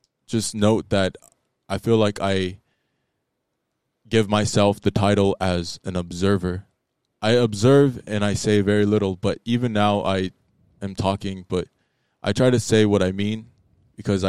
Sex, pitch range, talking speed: male, 95-115 Hz, 150 wpm